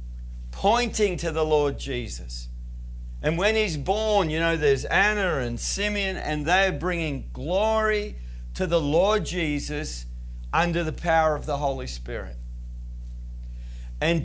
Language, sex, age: English, male, 50-69